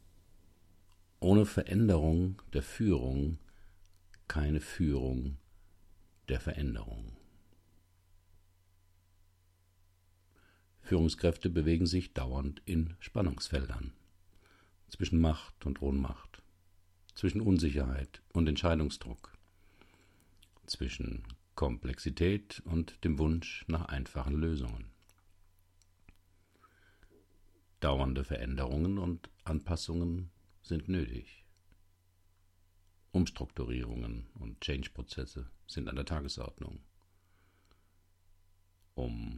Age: 50-69